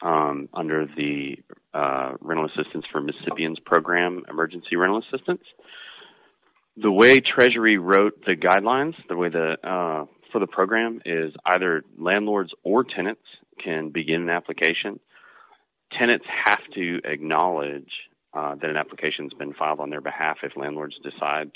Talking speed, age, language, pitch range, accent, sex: 140 wpm, 30-49, English, 75-95 Hz, American, male